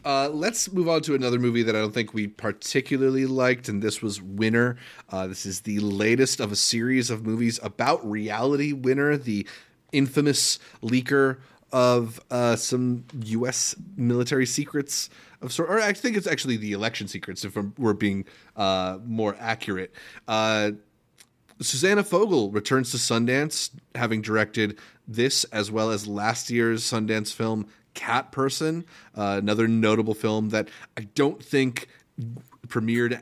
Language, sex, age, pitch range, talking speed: English, male, 30-49, 110-135 Hz, 150 wpm